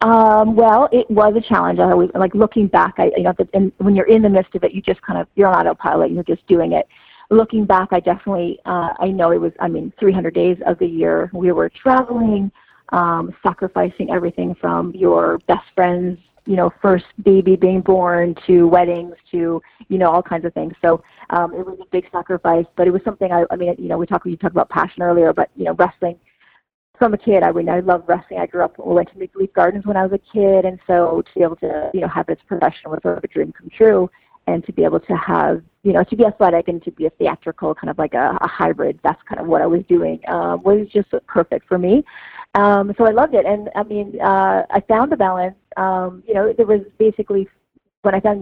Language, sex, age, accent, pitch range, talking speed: English, female, 30-49, American, 170-205 Hz, 235 wpm